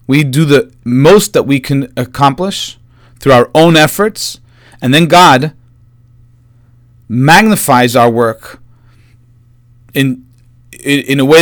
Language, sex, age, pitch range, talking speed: English, male, 40-59, 120-155 Hz, 120 wpm